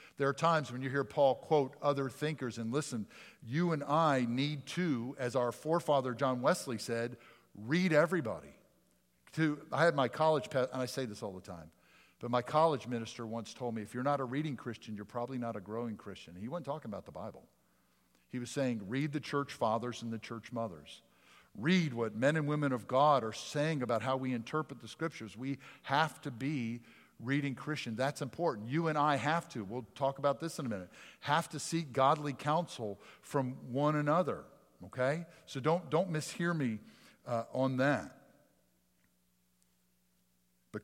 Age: 50-69